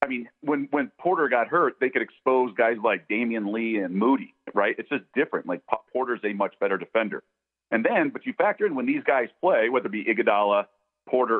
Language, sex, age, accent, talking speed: English, male, 40-59, American, 220 wpm